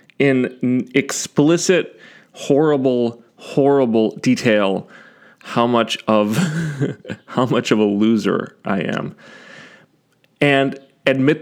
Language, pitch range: English, 110-140 Hz